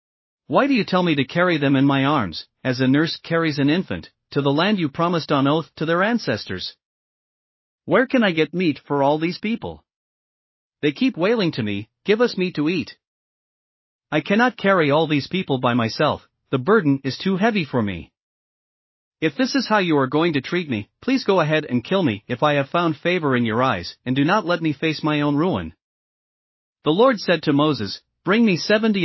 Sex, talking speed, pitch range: male, 210 wpm, 135-180 Hz